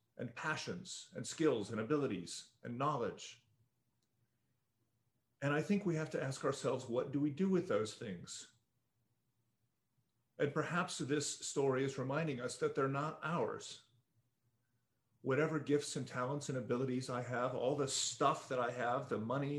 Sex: male